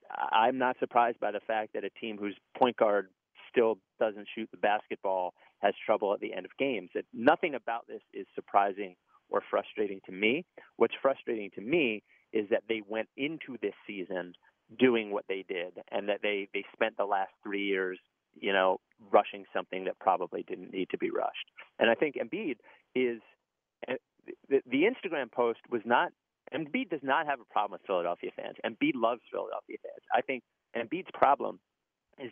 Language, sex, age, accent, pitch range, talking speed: English, male, 30-49, American, 100-130 Hz, 180 wpm